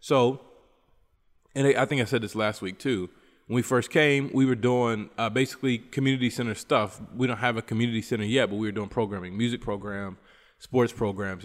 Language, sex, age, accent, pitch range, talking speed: English, male, 20-39, American, 110-130 Hz, 200 wpm